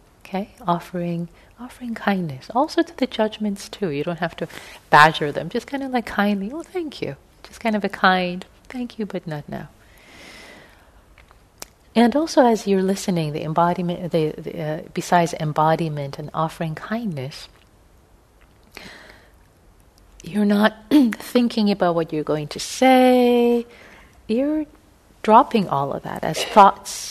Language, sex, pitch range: English, female, 140-215 Hz